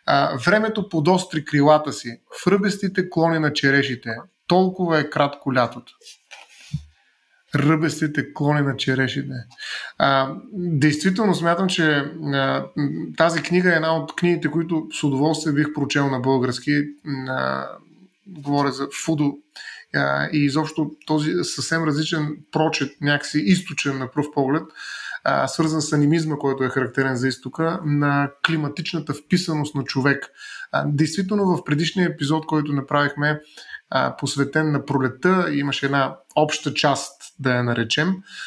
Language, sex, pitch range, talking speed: Bulgarian, male, 140-160 Hz, 125 wpm